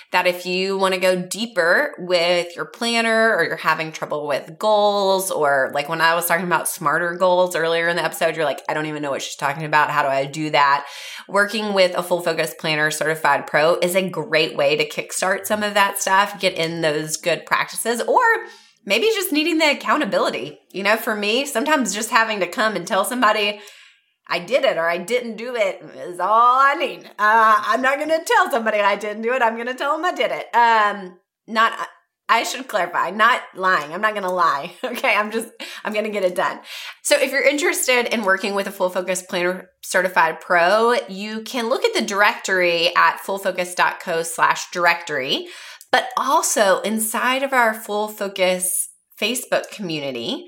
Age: 20-39